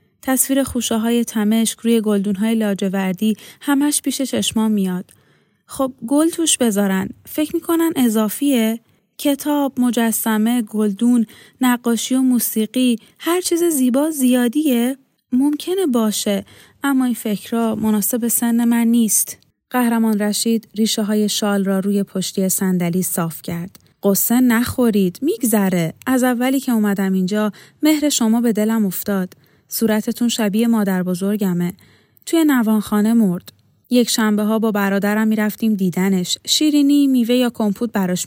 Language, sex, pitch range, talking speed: Persian, female, 205-250 Hz, 120 wpm